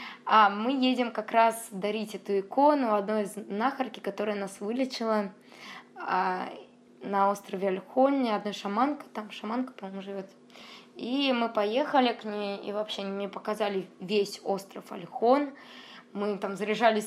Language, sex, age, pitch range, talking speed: Russian, female, 20-39, 200-230 Hz, 140 wpm